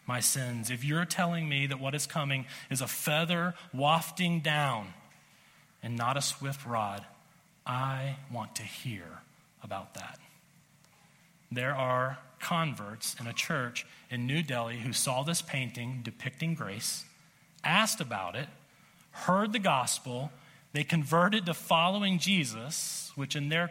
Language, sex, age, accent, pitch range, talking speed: English, male, 40-59, American, 135-175 Hz, 140 wpm